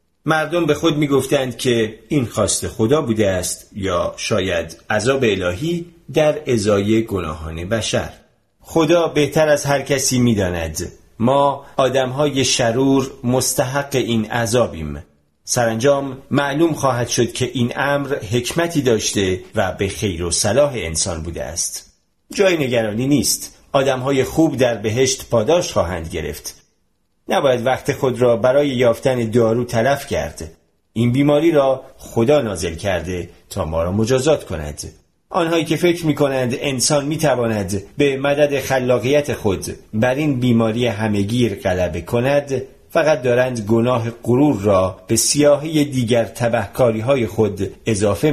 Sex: male